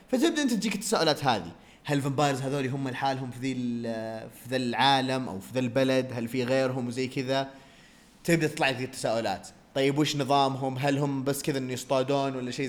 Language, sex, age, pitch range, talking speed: Arabic, male, 20-39, 130-195 Hz, 185 wpm